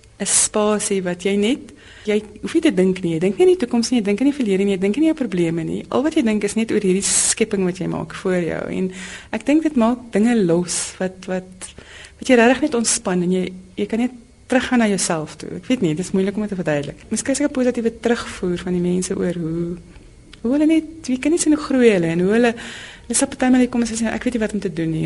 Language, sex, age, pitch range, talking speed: Dutch, female, 30-49, 185-235 Hz, 275 wpm